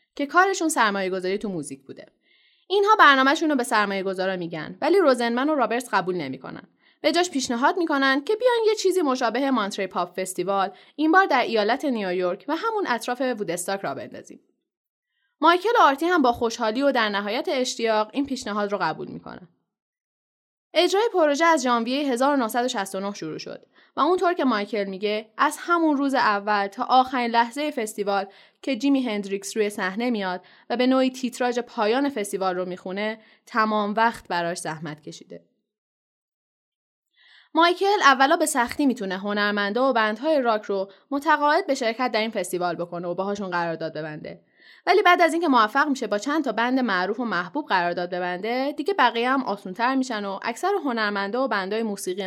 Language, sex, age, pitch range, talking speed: Persian, female, 10-29, 195-280 Hz, 165 wpm